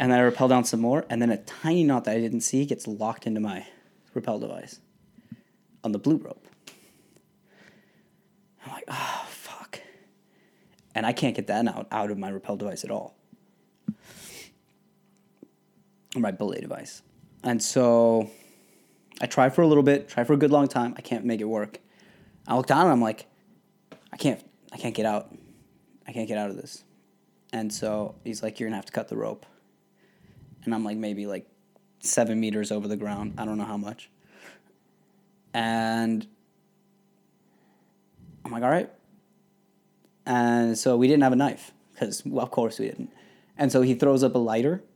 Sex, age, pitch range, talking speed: male, 20-39, 110-150 Hz, 180 wpm